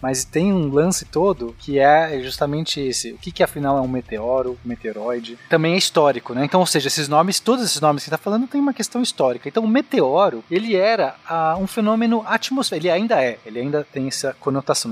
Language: Portuguese